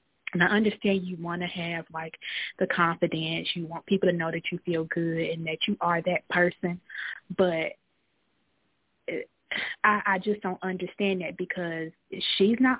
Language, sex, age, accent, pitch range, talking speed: English, female, 20-39, American, 165-200 Hz, 165 wpm